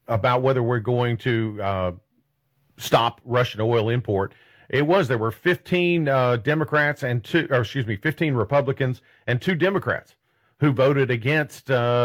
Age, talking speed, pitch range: 40-59, 155 wpm, 115-145 Hz